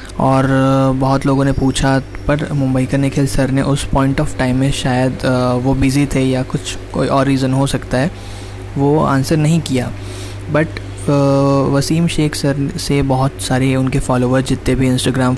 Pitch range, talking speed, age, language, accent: 125-140 Hz, 170 wpm, 20-39, English, Indian